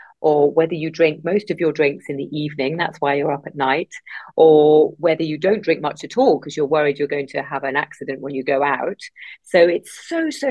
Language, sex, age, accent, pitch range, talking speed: English, female, 40-59, British, 145-185 Hz, 240 wpm